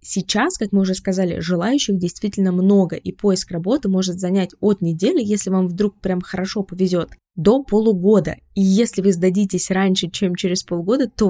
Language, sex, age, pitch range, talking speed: Russian, female, 20-39, 175-200 Hz, 170 wpm